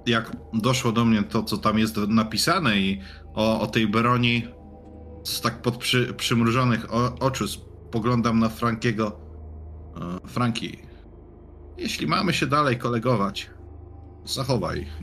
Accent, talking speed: native, 115 wpm